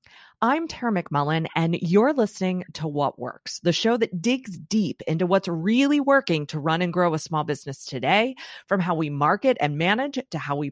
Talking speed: 195 wpm